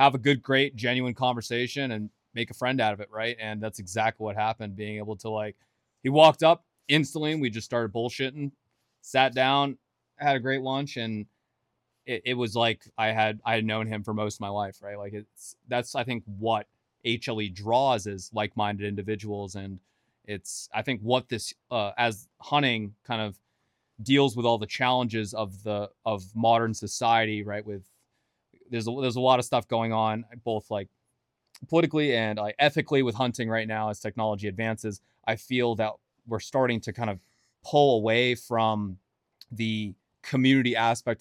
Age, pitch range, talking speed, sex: 20-39, 105-125 Hz, 180 wpm, male